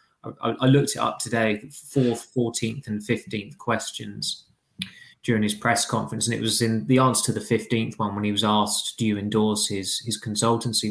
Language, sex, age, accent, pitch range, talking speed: English, male, 20-39, British, 105-120 Hz, 185 wpm